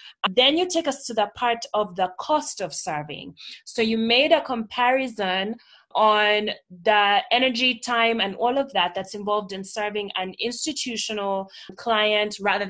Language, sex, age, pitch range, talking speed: English, female, 20-39, 195-235 Hz, 155 wpm